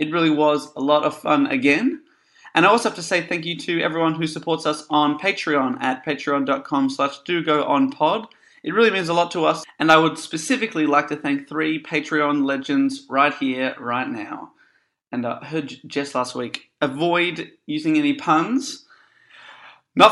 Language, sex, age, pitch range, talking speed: English, male, 30-49, 145-220 Hz, 185 wpm